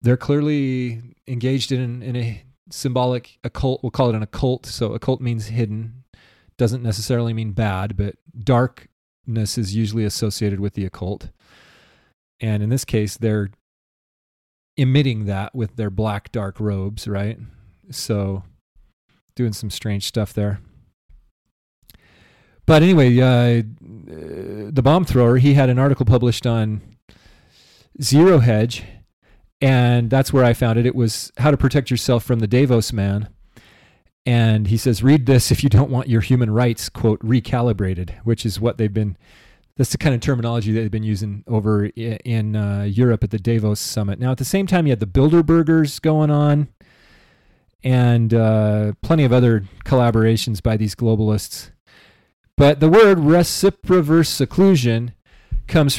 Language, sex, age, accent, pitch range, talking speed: English, male, 30-49, American, 105-130 Hz, 150 wpm